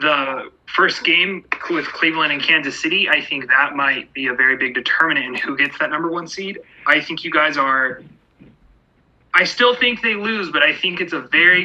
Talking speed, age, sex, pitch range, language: 205 wpm, 30-49, male, 145-185 Hz, English